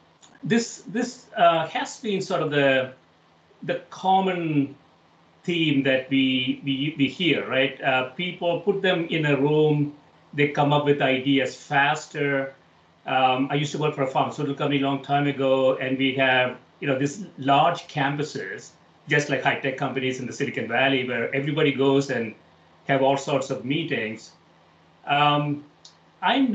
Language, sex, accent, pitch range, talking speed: English, male, Indian, 135-170 Hz, 160 wpm